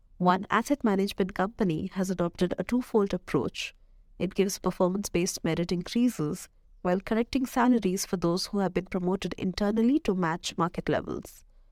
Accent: Indian